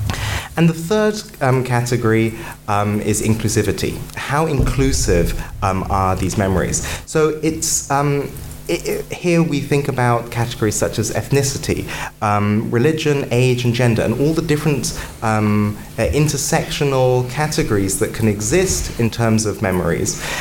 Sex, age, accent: male, 20-39, British